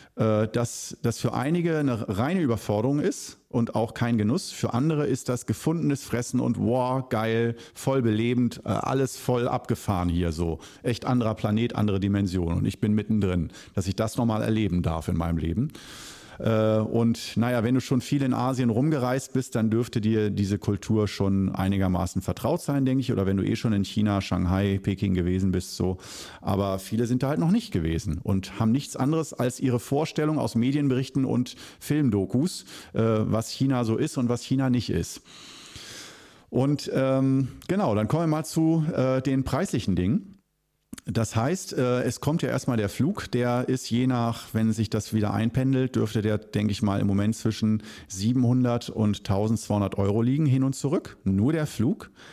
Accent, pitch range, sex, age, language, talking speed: German, 100-130 Hz, male, 50-69, German, 180 wpm